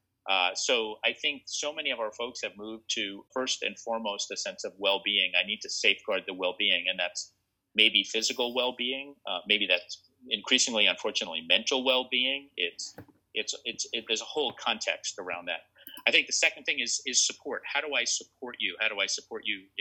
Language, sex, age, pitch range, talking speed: English, male, 40-59, 105-130 Hz, 195 wpm